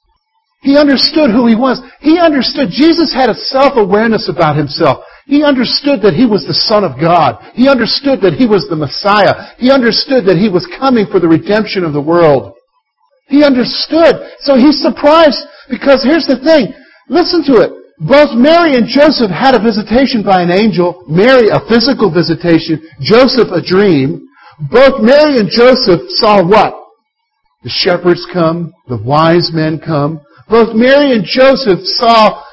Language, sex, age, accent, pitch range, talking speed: English, male, 50-69, American, 175-280 Hz, 160 wpm